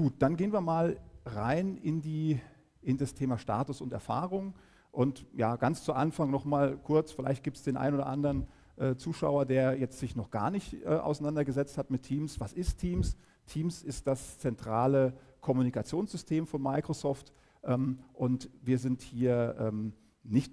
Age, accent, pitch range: 50-69, German, 120-155 Hz